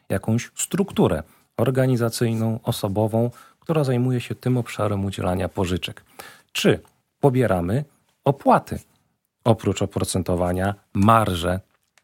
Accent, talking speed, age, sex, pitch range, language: native, 85 wpm, 40-59, male, 90-115 Hz, Polish